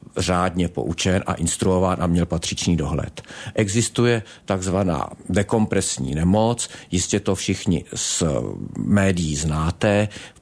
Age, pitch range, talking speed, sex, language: 50-69, 90-110 Hz, 110 wpm, male, Czech